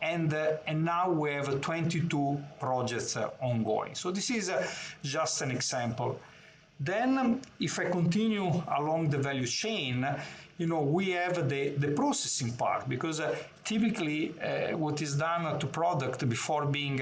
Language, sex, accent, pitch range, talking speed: English, male, Italian, 135-175 Hz, 160 wpm